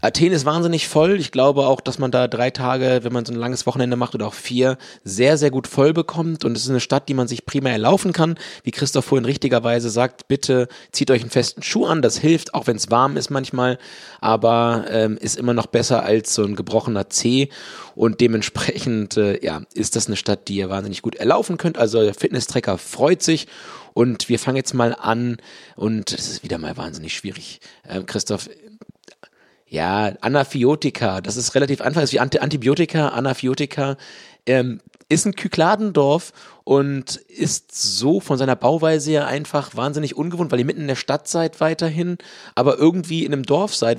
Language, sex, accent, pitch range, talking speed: German, male, German, 115-145 Hz, 195 wpm